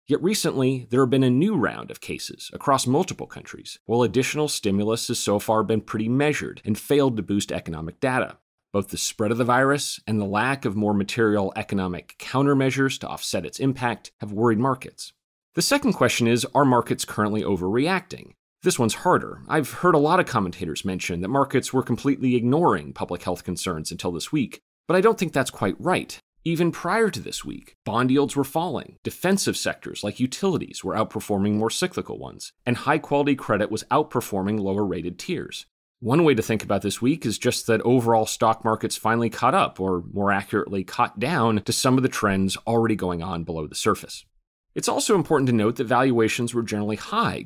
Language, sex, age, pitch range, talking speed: English, male, 30-49, 100-135 Hz, 190 wpm